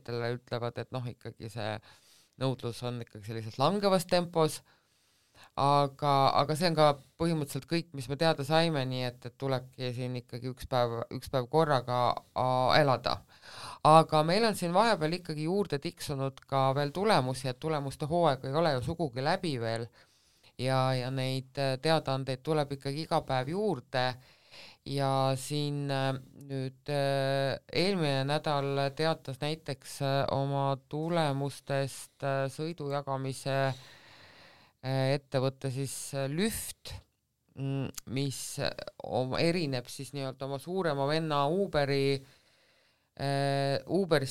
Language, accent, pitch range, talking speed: English, Finnish, 130-150 Hz, 115 wpm